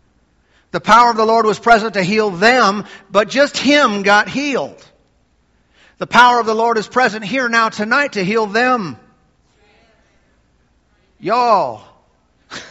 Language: English